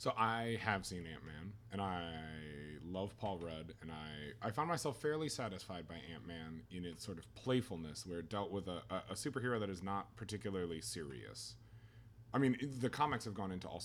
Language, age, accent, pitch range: English, 30-49, American, 90-115 Hz